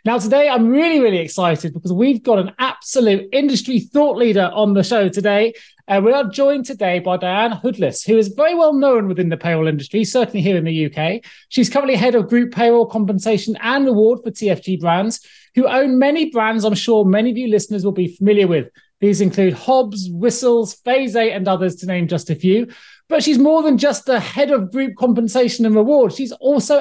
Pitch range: 180-245 Hz